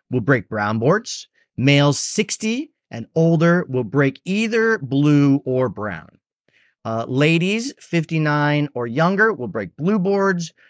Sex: male